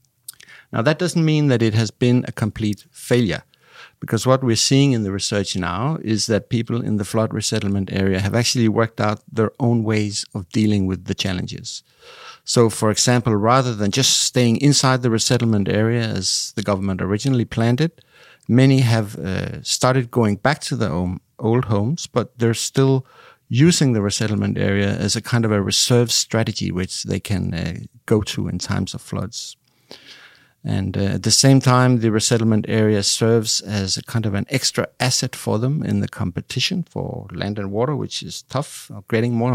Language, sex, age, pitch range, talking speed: Danish, male, 50-69, 105-130 Hz, 185 wpm